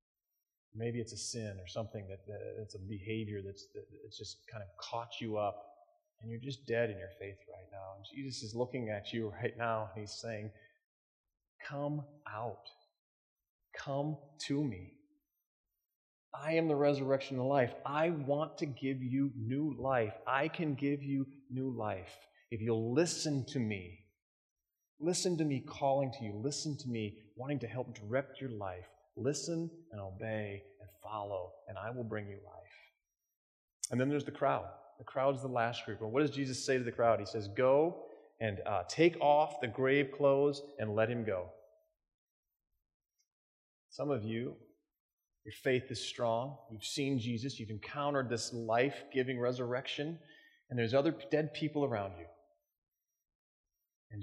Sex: male